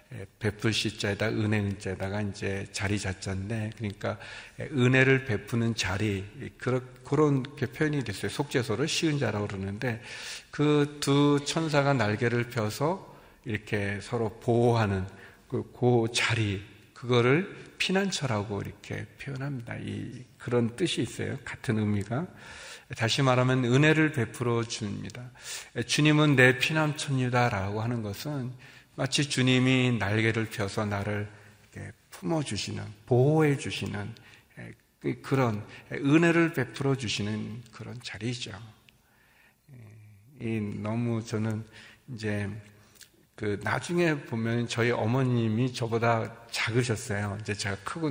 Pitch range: 105-130 Hz